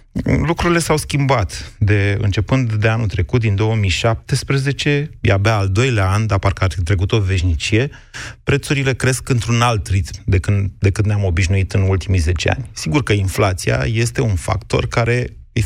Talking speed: 160 wpm